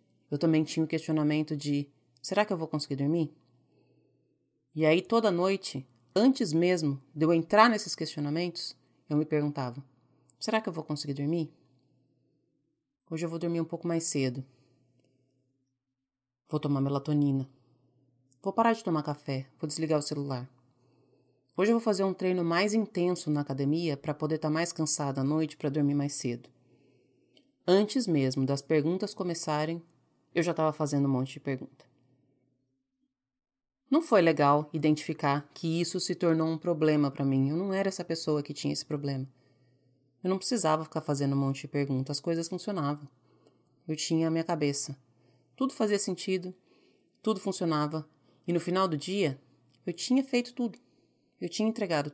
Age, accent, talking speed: 30-49, Brazilian, 160 wpm